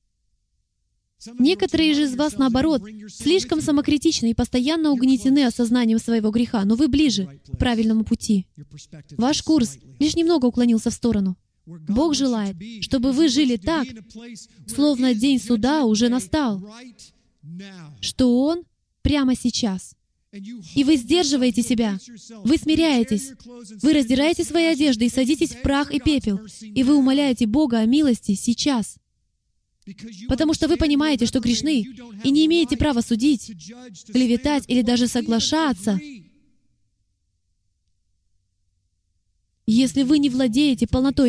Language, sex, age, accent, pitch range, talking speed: Russian, female, 20-39, native, 195-280 Hz, 120 wpm